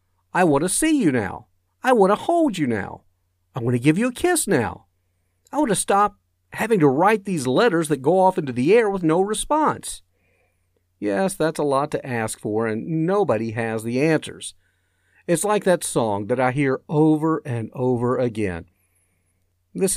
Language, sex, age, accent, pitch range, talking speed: English, male, 50-69, American, 95-155 Hz, 185 wpm